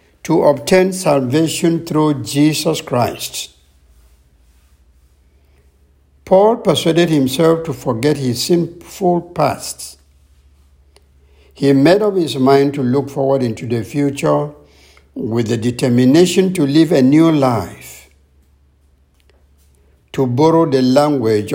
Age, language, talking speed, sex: 60-79, English, 105 wpm, male